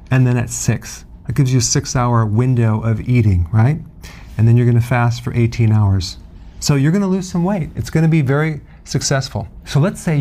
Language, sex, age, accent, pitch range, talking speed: English, male, 40-59, American, 115-140 Hz, 210 wpm